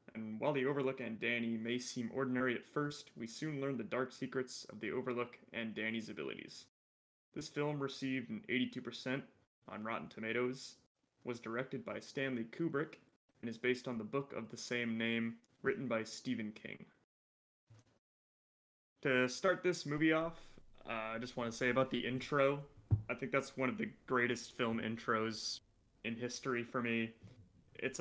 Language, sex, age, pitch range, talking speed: English, male, 20-39, 110-125 Hz, 165 wpm